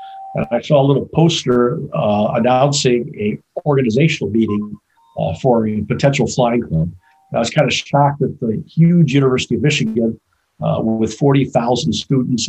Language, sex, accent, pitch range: English, male, American, 110-135 Hz